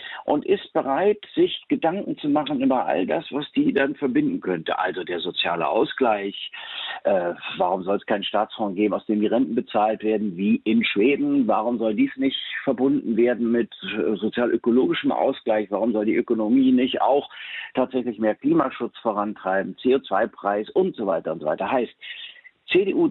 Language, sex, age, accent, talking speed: German, male, 50-69, German, 165 wpm